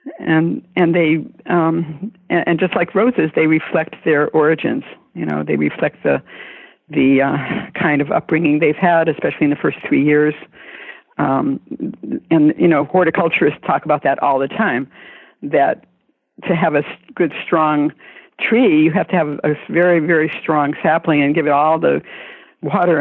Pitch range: 155-210 Hz